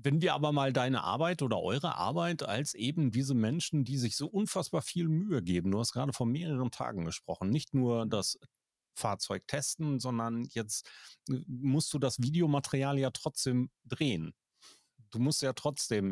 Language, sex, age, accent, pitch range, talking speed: German, male, 40-59, German, 110-140 Hz, 170 wpm